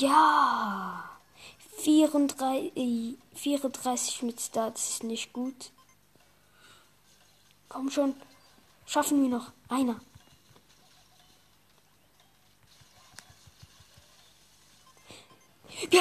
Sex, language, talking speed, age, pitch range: female, German, 60 wpm, 20-39, 215-280 Hz